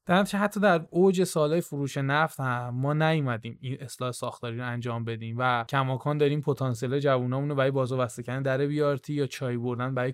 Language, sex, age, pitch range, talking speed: Persian, male, 20-39, 130-150 Hz, 180 wpm